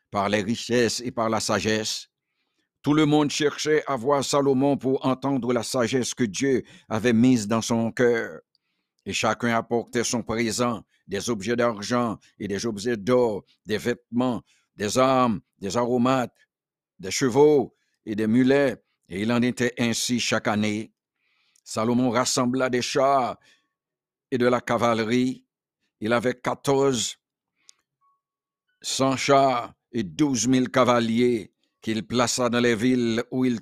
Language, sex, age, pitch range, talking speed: English, male, 60-79, 115-130 Hz, 140 wpm